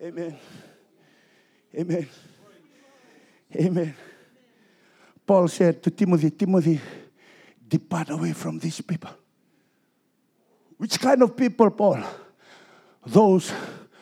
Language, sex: English, male